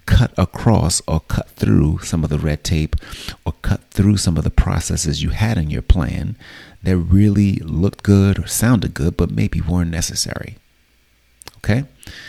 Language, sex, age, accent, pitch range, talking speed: English, male, 30-49, American, 75-95 Hz, 165 wpm